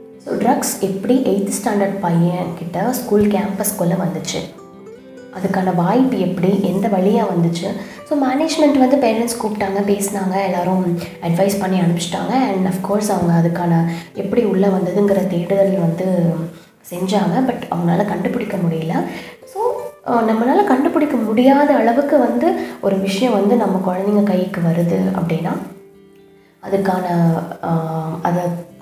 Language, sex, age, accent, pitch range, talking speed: Tamil, female, 20-39, native, 180-230 Hz, 115 wpm